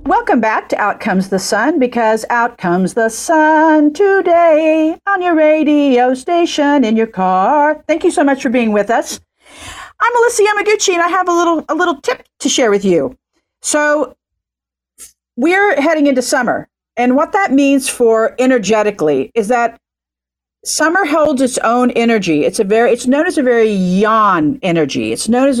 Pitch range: 220-300 Hz